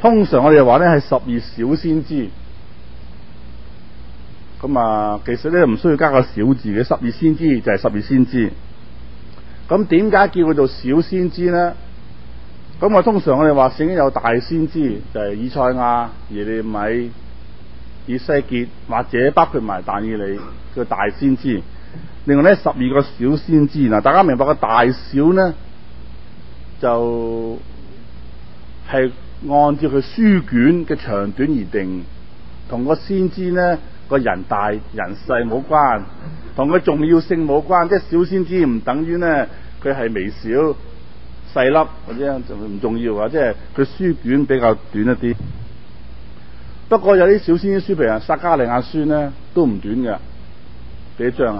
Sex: male